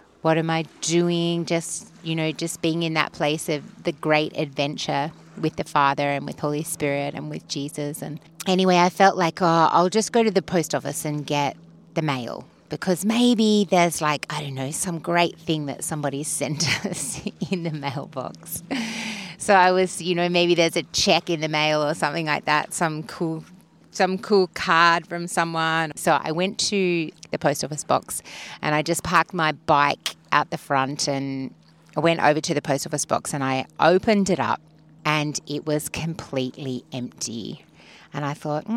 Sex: female